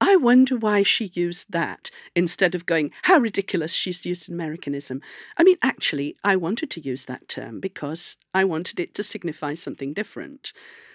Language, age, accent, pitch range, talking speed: English, 50-69, British, 170-255 Hz, 170 wpm